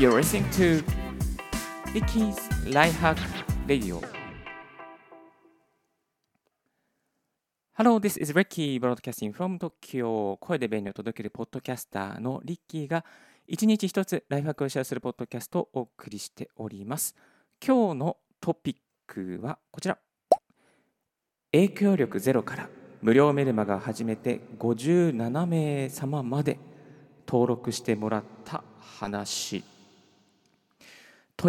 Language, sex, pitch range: Japanese, male, 110-165 Hz